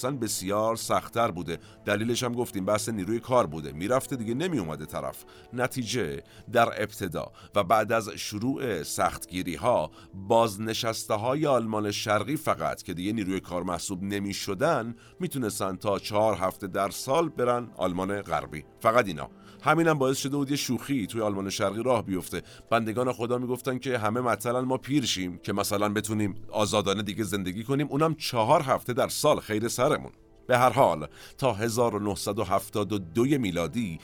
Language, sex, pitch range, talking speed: Persian, male, 95-125 Hz, 155 wpm